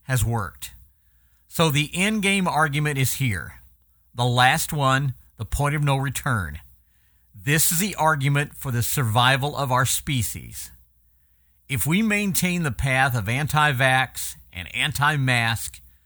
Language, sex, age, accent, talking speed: English, male, 50-69, American, 135 wpm